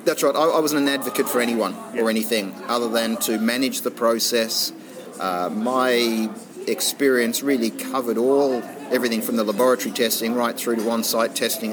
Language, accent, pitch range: English, Australian, 110-125 Hz